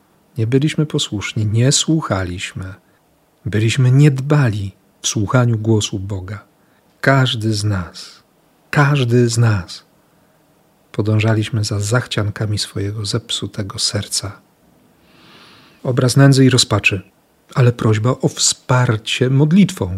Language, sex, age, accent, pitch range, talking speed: Polish, male, 40-59, native, 110-140 Hz, 100 wpm